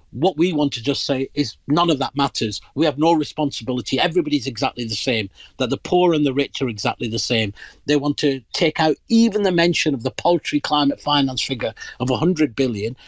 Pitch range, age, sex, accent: 125-160 Hz, 50-69, male, British